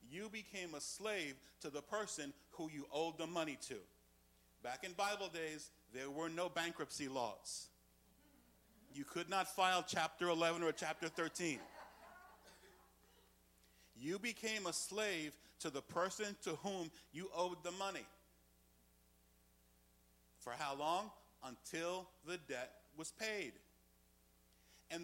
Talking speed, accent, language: 125 wpm, American, English